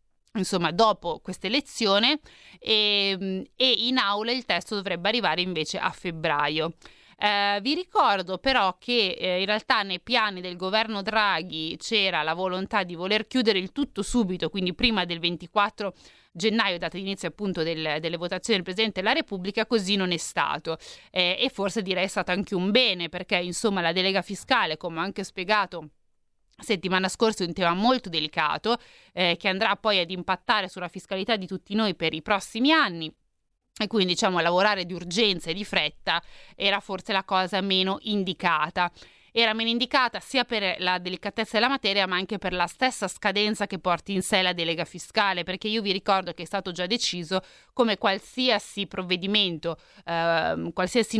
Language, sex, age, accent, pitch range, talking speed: Italian, female, 30-49, native, 180-220 Hz, 170 wpm